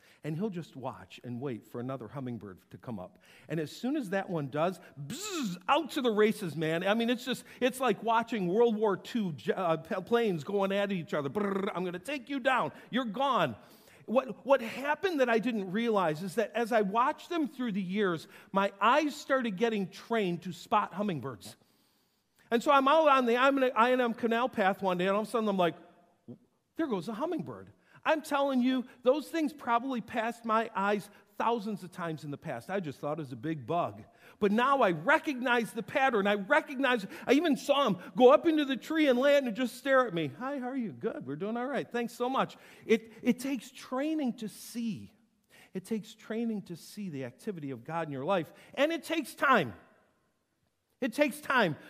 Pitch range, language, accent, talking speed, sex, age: 180-260 Hz, English, American, 205 wpm, male, 50-69